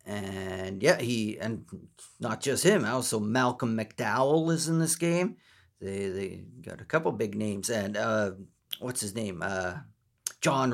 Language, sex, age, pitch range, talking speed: English, male, 40-59, 115-140 Hz, 155 wpm